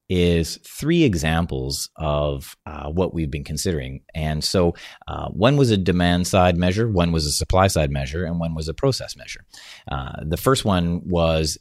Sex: male